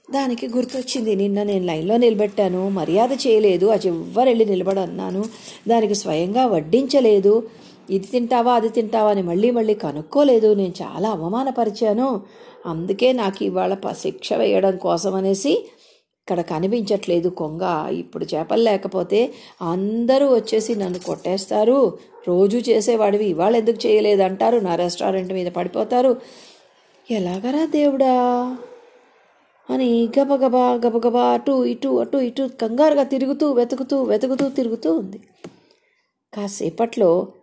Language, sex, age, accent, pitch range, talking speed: Telugu, female, 50-69, native, 190-260 Hz, 105 wpm